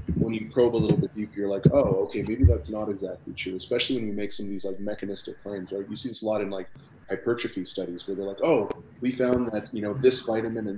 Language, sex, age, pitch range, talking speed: English, male, 30-49, 95-115 Hz, 265 wpm